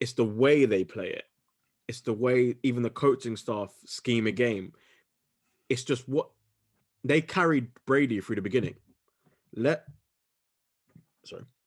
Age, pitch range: 20-39, 115-150 Hz